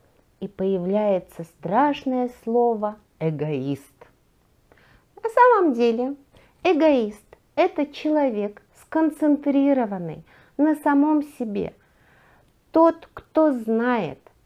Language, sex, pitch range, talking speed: Russian, female, 210-290 Hz, 75 wpm